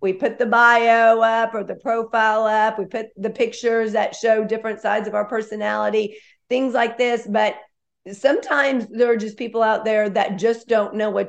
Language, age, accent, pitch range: English, 40-59, American, 205-235 Hz